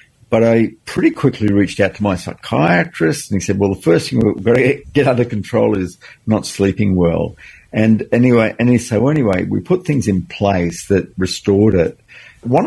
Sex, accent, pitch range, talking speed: male, Australian, 95-110 Hz, 200 wpm